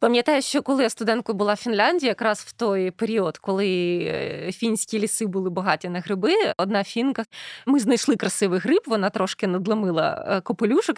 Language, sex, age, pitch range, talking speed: Ukrainian, female, 20-39, 210-280 Hz, 160 wpm